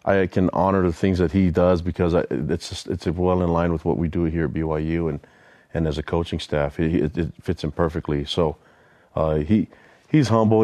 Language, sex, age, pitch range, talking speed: English, male, 30-49, 80-95 Hz, 225 wpm